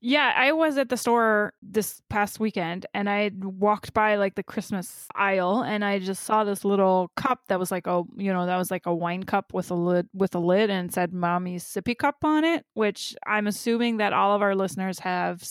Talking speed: 225 wpm